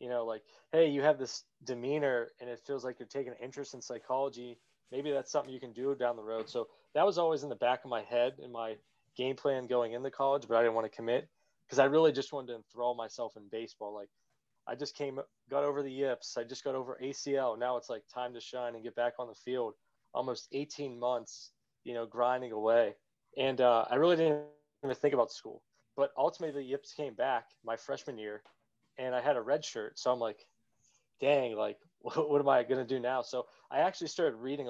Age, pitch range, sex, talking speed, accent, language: 20-39, 120-140 Hz, male, 230 wpm, American, English